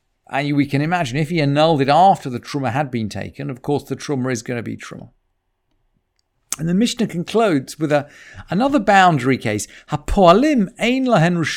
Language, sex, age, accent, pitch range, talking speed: English, male, 50-69, British, 125-180 Hz, 185 wpm